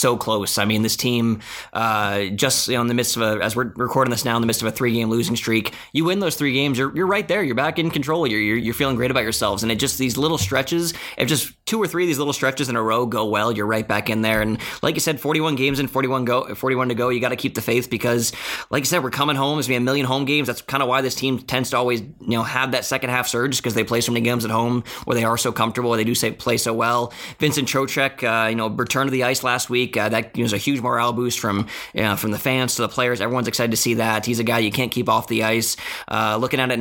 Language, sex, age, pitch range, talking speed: English, male, 20-39, 115-130 Hz, 305 wpm